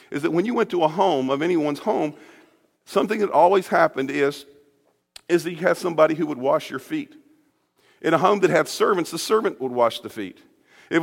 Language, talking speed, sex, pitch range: English, 210 wpm, male, 125-175 Hz